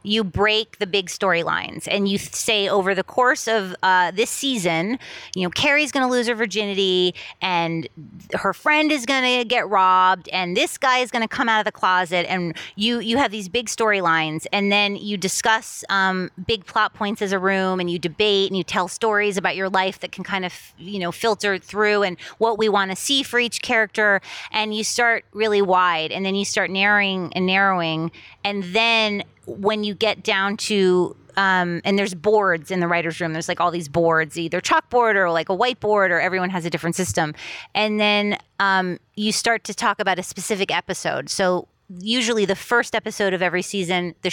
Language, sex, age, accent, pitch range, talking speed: English, female, 30-49, American, 180-220 Hz, 205 wpm